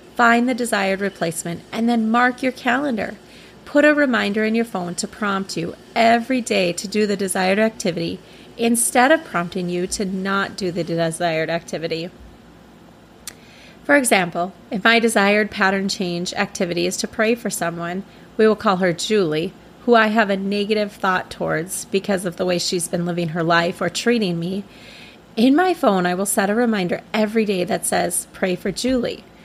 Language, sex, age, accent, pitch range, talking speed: English, female, 30-49, American, 180-230 Hz, 175 wpm